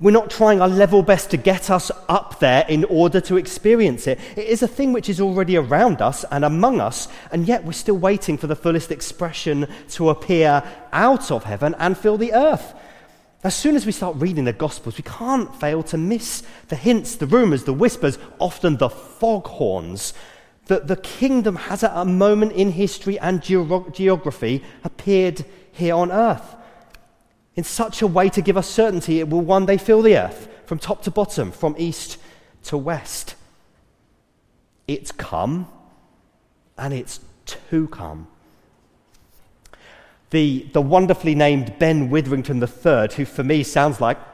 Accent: British